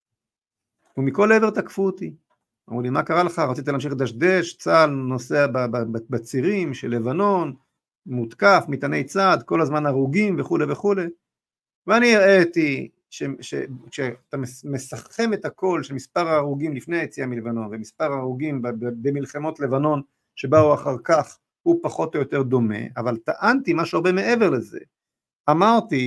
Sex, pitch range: male, 130-180 Hz